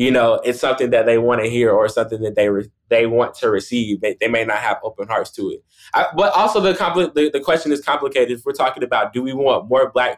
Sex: male